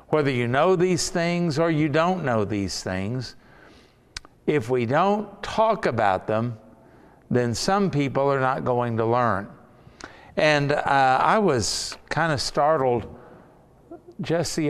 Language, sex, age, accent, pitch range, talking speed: English, male, 60-79, American, 115-155 Hz, 140 wpm